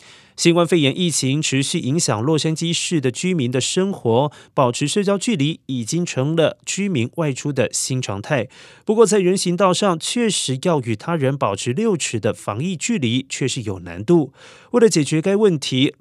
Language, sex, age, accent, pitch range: Chinese, male, 30-49, native, 130-180 Hz